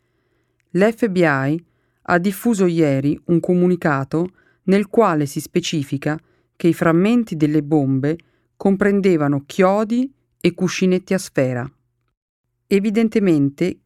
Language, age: Italian, 40-59